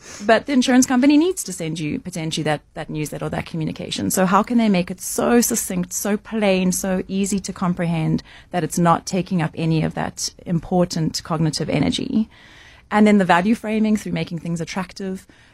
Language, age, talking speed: English, 30-49, 190 wpm